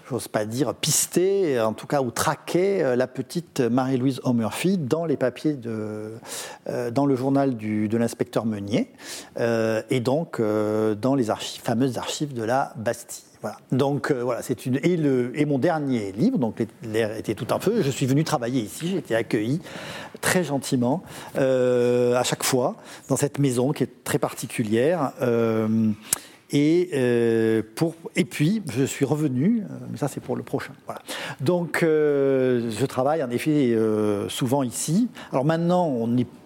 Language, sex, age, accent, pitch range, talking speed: French, male, 50-69, French, 120-160 Hz, 175 wpm